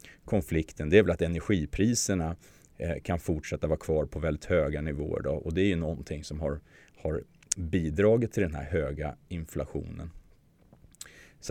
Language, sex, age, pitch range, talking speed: Swedish, male, 30-49, 75-100 Hz, 155 wpm